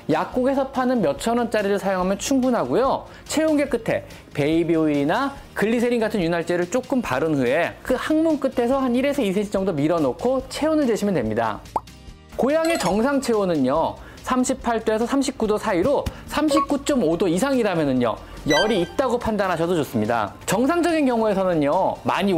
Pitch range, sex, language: 170-270 Hz, male, Korean